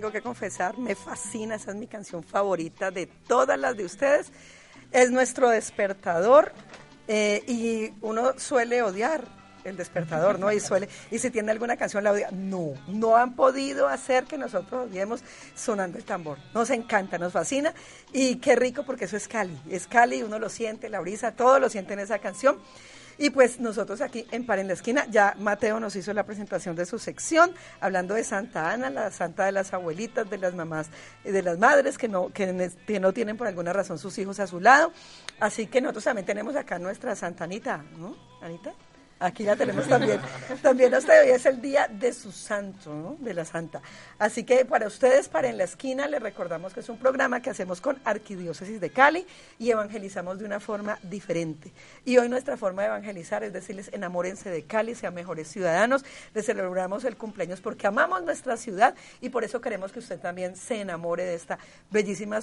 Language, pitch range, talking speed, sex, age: Spanish, 185-245 Hz, 195 wpm, female, 40-59